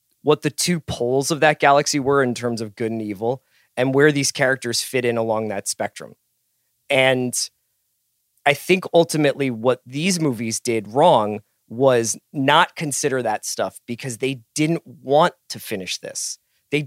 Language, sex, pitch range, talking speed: English, male, 120-155 Hz, 160 wpm